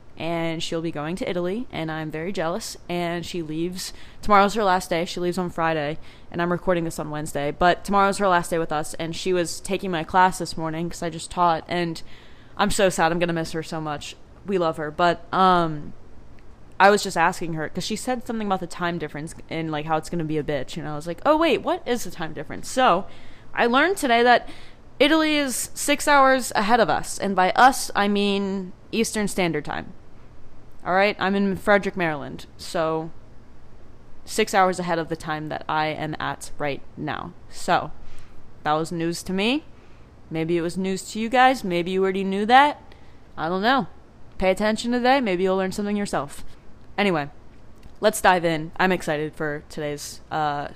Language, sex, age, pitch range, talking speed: English, female, 20-39, 160-200 Hz, 200 wpm